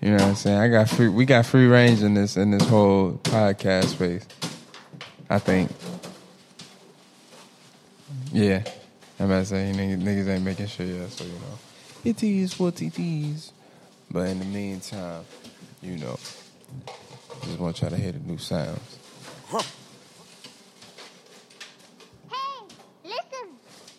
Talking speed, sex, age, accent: 140 wpm, male, 20-39, American